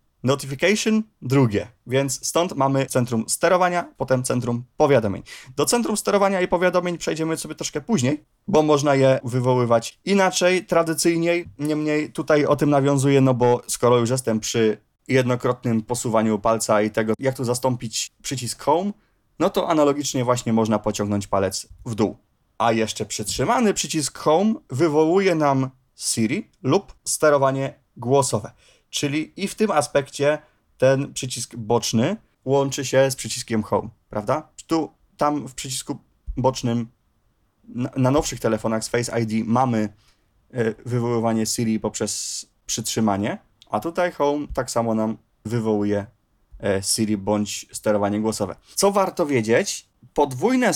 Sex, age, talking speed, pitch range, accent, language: male, 20-39, 130 wpm, 115-150 Hz, native, Polish